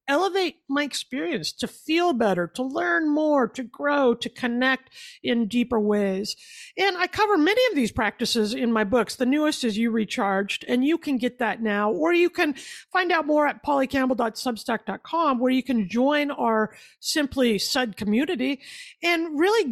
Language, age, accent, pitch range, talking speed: English, 50-69, American, 230-315 Hz, 165 wpm